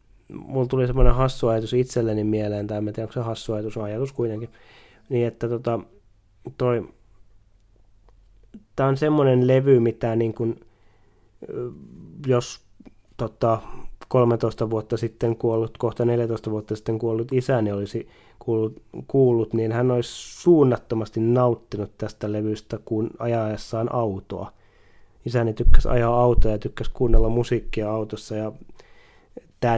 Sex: male